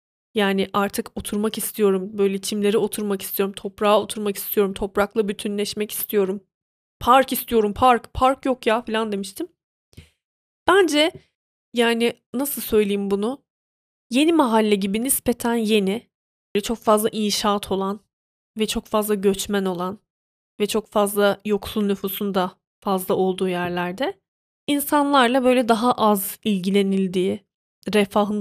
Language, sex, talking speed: Turkish, female, 120 wpm